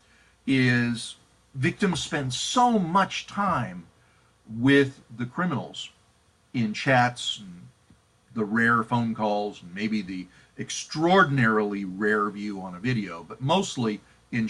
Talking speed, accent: 115 wpm, American